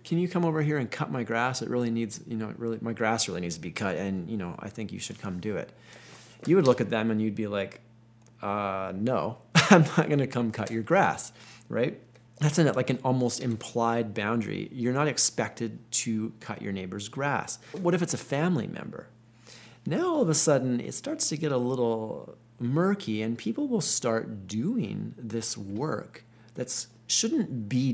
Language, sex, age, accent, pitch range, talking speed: English, male, 30-49, American, 110-135 Hz, 205 wpm